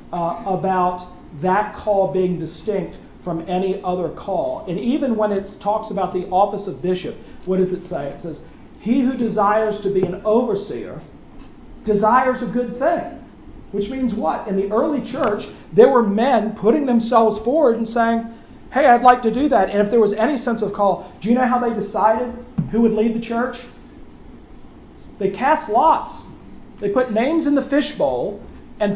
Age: 40-59